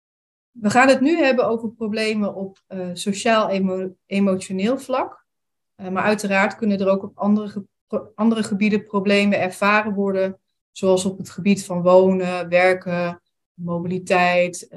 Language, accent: Dutch, Dutch